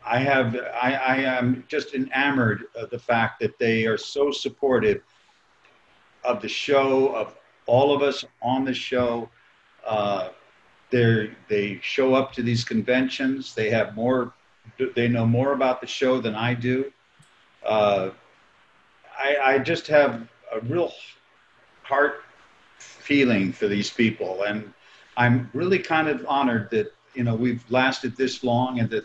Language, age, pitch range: English, 50-69, 115-135 Hz